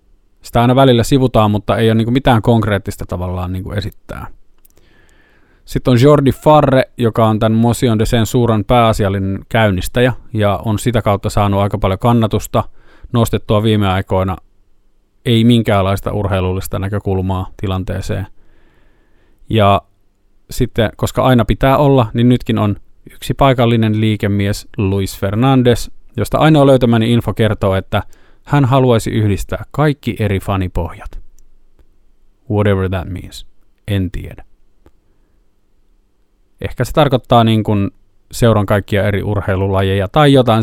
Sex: male